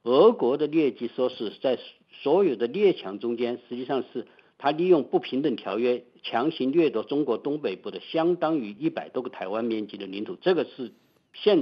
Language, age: Chinese, 50-69